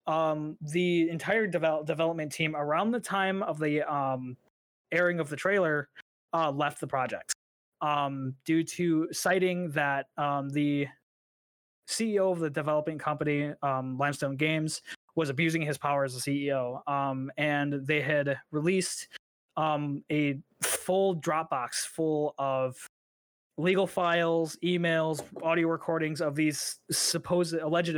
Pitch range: 140-165 Hz